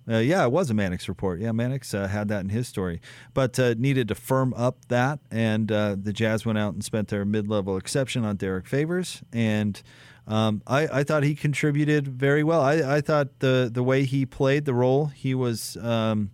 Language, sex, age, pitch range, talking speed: English, male, 30-49, 110-135 Hz, 215 wpm